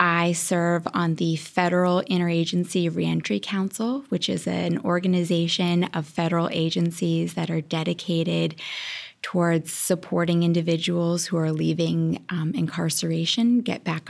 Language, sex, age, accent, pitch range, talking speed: English, female, 20-39, American, 160-175 Hz, 120 wpm